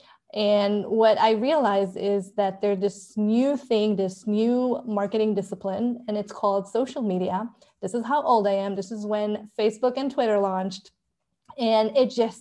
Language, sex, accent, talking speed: English, female, American, 170 wpm